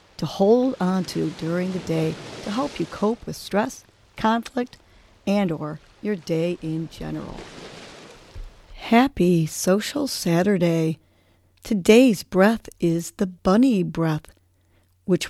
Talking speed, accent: 120 wpm, American